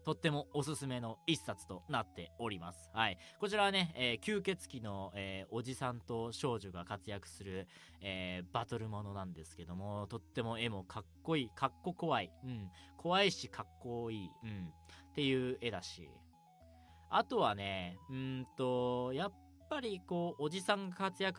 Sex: male